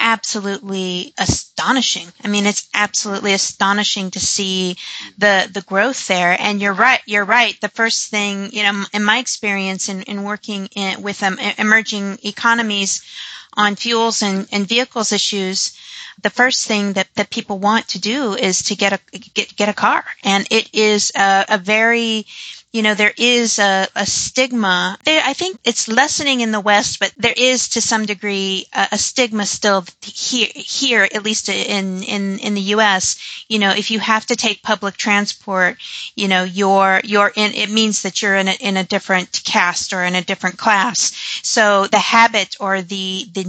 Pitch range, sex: 195-220 Hz, female